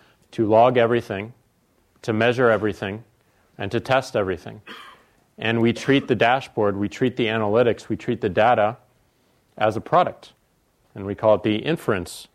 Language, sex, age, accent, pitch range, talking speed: English, male, 40-59, American, 105-130 Hz, 155 wpm